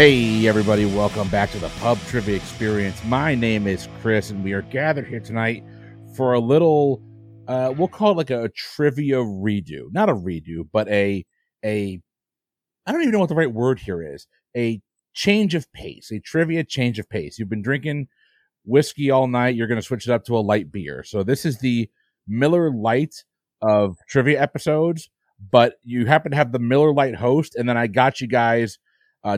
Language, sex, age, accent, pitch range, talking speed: English, male, 40-59, American, 110-135 Hz, 195 wpm